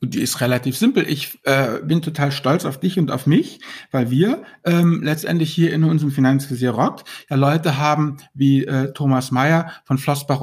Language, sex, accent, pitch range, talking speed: German, male, German, 140-180 Hz, 190 wpm